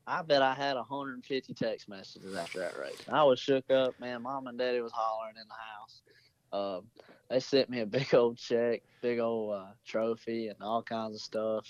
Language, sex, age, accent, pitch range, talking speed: English, male, 30-49, American, 115-130 Hz, 205 wpm